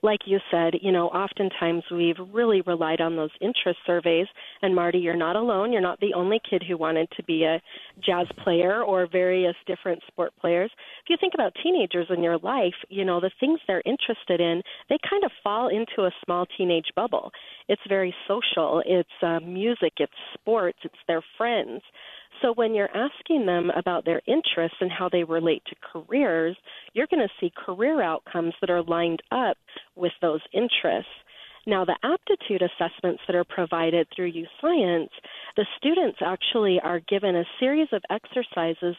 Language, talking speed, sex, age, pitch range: English, 175 wpm, female, 40-59, 175-230 Hz